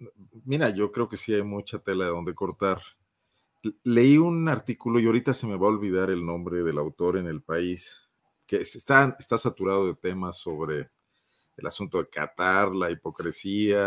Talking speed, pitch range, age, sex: 175 wpm, 100-125 Hz, 40-59, male